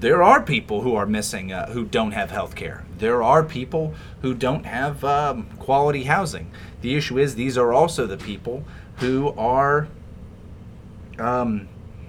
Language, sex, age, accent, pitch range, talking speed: English, male, 30-49, American, 105-155 Hz, 160 wpm